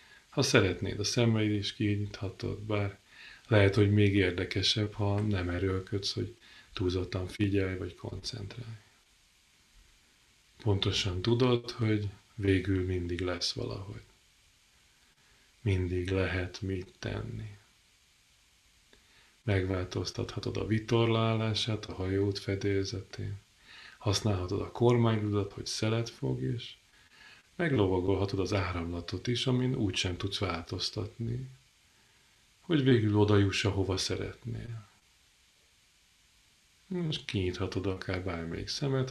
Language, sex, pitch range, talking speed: Hungarian, male, 95-115 Hz, 95 wpm